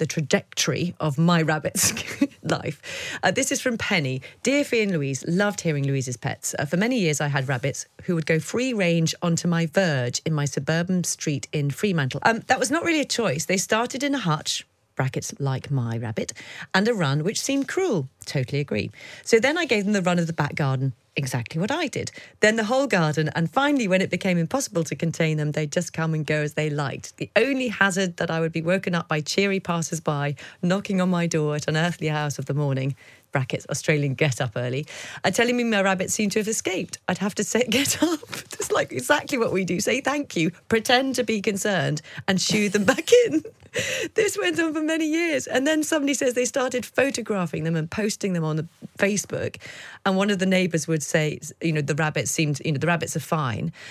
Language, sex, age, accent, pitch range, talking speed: English, female, 40-59, British, 155-220 Hz, 220 wpm